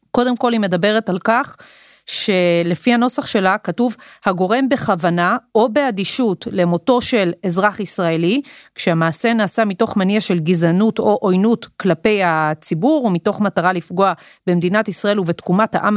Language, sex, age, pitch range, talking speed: Hebrew, female, 30-49, 190-245 Hz, 135 wpm